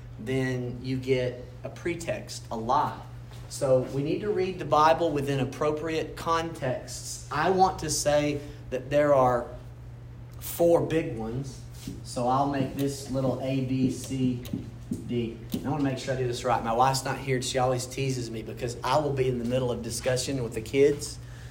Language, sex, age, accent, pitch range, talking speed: English, male, 40-59, American, 125-160 Hz, 180 wpm